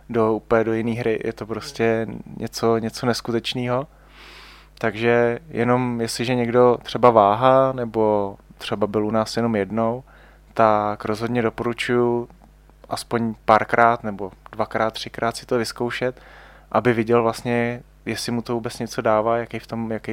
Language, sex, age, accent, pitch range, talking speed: Czech, male, 20-39, native, 105-115 Hz, 145 wpm